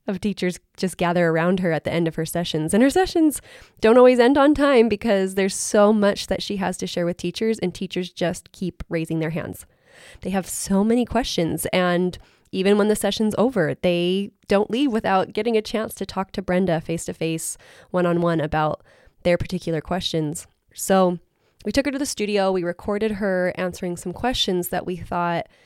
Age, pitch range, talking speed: 20-39, 175-210 Hz, 190 wpm